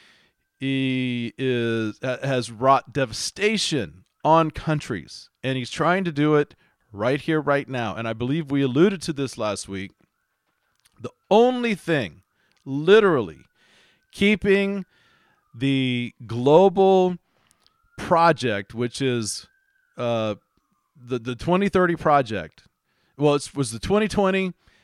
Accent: American